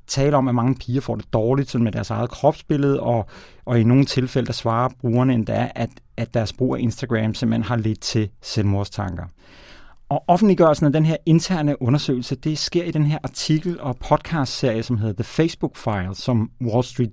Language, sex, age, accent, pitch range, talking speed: Danish, male, 30-49, native, 110-135 Hz, 195 wpm